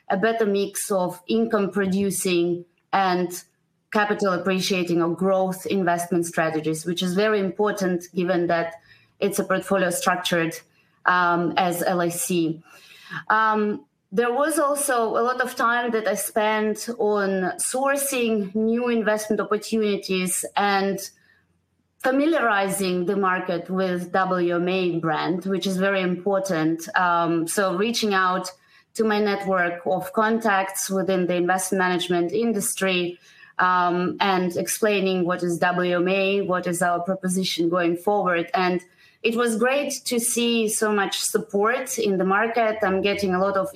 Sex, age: female, 20-39